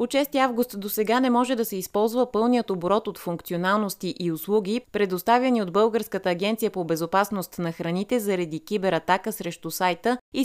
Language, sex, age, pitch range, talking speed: Bulgarian, female, 30-49, 175-225 Hz, 165 wpm